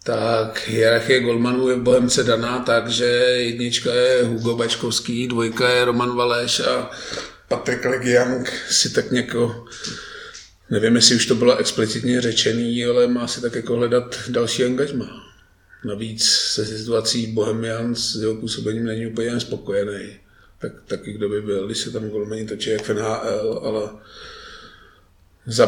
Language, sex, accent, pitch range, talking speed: Czech, male, native, 110-120 Hz, 140 wpm